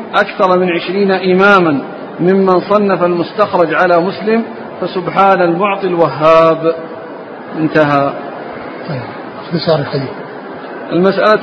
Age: 50-69